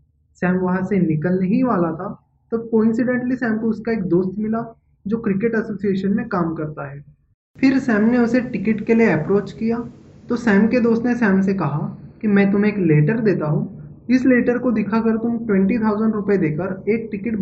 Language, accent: Hindi, native